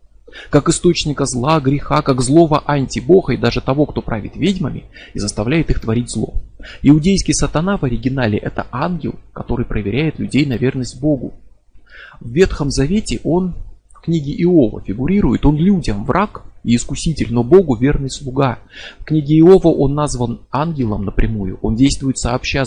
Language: Russian